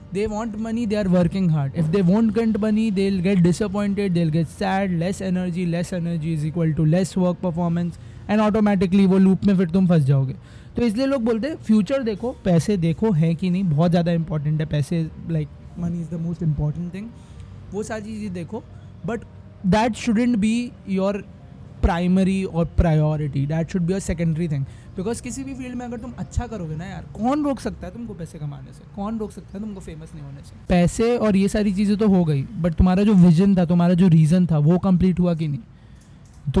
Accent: Indian